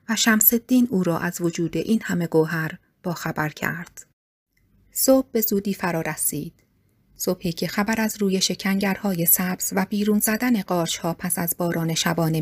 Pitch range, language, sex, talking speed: 160-200 Hz, Persian, female, 160 wpm